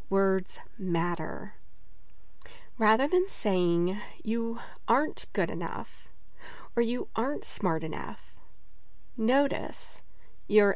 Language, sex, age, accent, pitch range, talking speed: English, female, 40-59, American, 170-240 Hz, 90 wpm